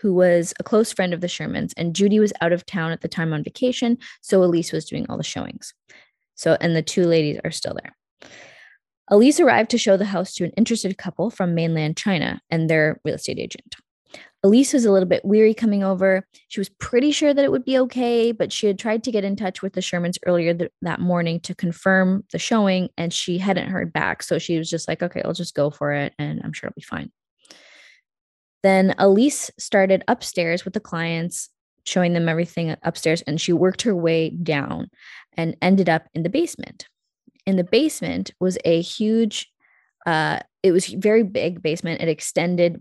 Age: 10-29